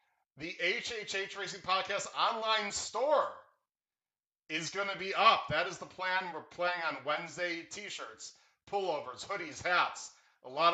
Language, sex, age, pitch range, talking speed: English, male, 40-59, 130-160 Hz, 140 wpm